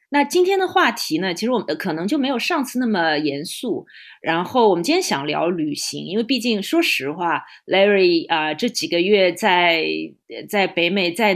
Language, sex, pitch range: Chinese, female, 165-245 Hz